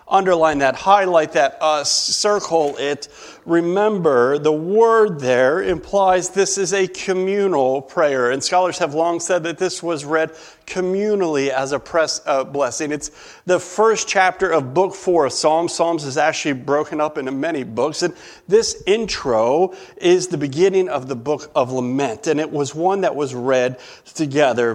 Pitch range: 130-185 Hz